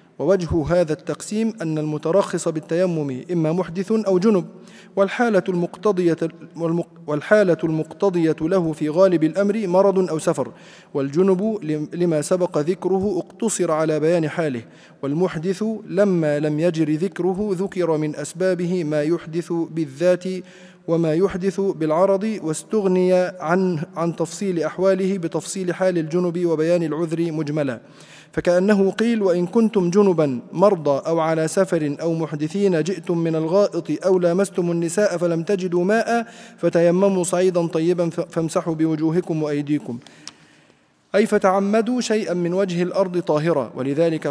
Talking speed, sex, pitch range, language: 120 wpm, male, 160-195 Hz, Arabic